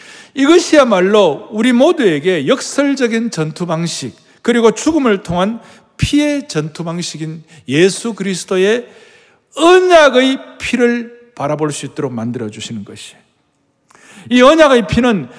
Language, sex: Korean, male